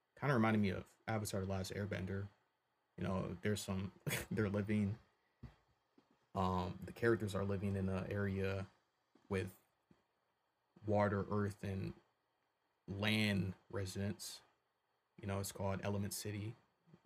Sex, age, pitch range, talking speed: male, 30-49, 100-115 Hz, 125 wpm